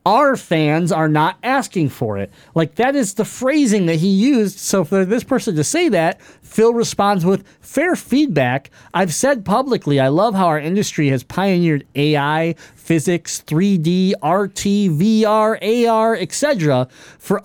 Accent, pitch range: American, 145-205 Hz